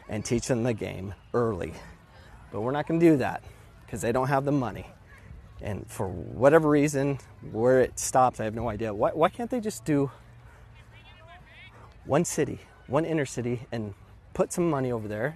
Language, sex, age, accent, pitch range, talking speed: English, male, 30-49, American, 105-130 Hz, 185 wpm